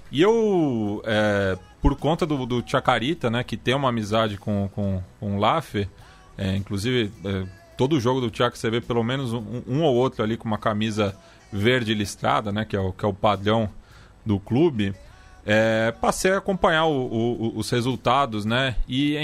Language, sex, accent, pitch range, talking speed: Portuguese, male, Brazilian, 110-150 Hz, 185 wpm